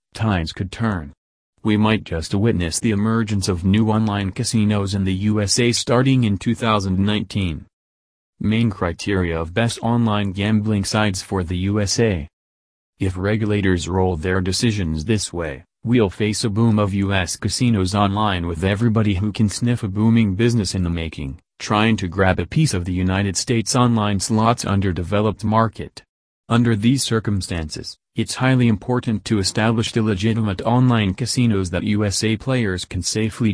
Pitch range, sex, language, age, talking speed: 95-115 Hz, male, English, 30-49, 150 wpm